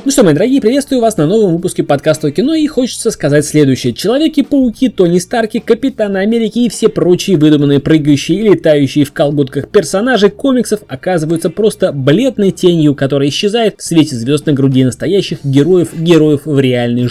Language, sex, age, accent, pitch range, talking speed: Russian, male, 20-39, native, 140-215 Hz, 170 wpm